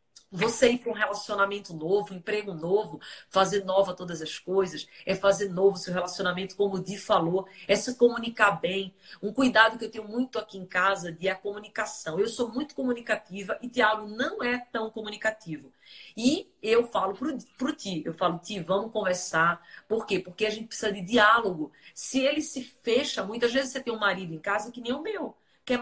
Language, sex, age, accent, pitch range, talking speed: Portuguese, female, 40-59, Brazilian, 195-250 Hz, 200 wpm